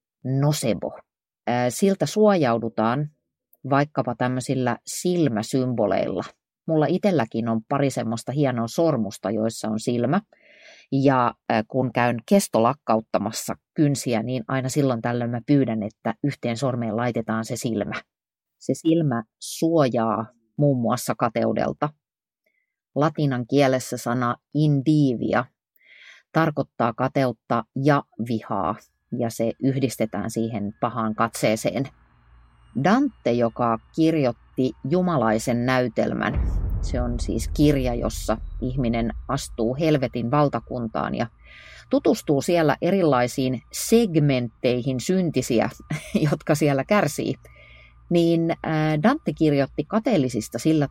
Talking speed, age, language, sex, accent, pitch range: 95 wpm, 30-49, Finnish, female, native, 115-150 Hz